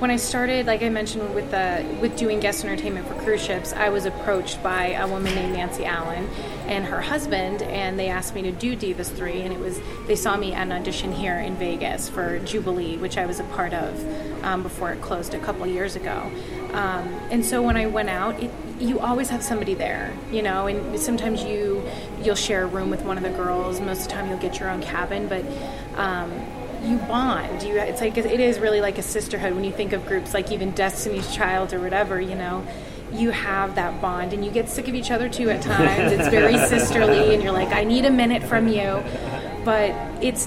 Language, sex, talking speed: English, female, 225 wpm